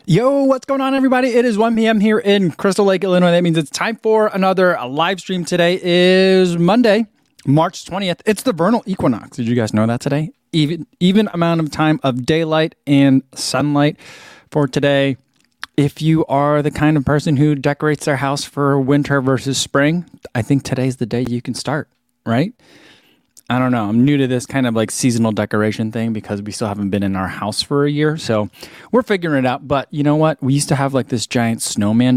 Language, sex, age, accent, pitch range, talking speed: English, male, 20-39, American, 125-170 Hz, 210 wpm